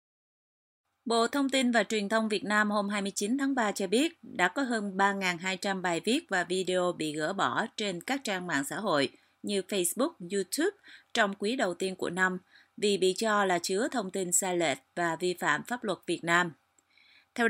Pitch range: 180-225 Hz